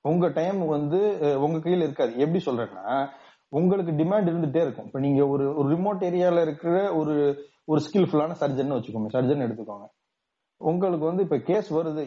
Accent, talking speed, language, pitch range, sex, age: native, 155 wpm, Tamil, 140-180 Hz, male, 30-49